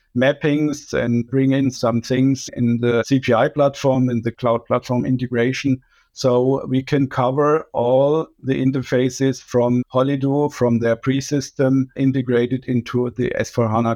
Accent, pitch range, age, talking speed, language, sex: German, 125-140 Hz, 50-69, 135 wpm, English, male